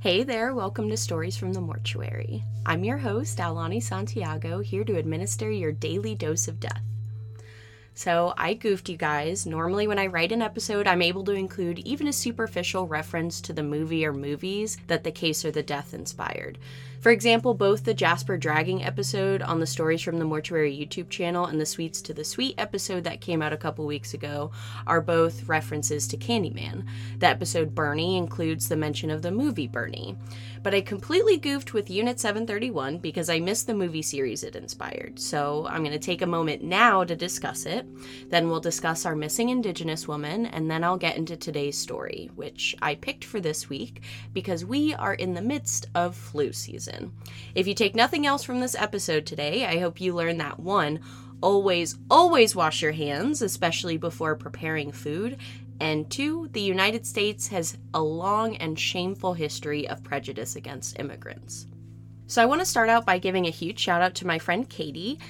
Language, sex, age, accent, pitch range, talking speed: English, female, 20-39, American, 120-190 Hz, 190 wpm